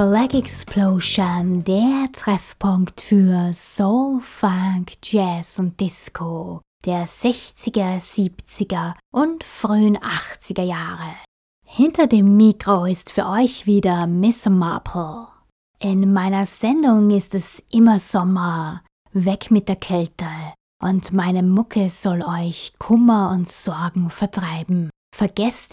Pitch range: 180-210 Hz